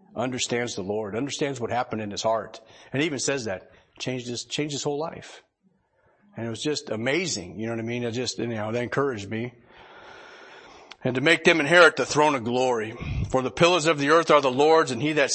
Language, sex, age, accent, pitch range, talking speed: English, male, 40-59, American, 120-155 Hz, 225 wpm